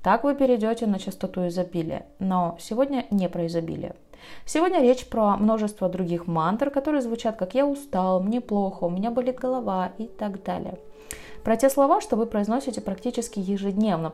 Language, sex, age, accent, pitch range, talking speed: Russian, female, 20-39, native, 180-230 Hz, 165 wpm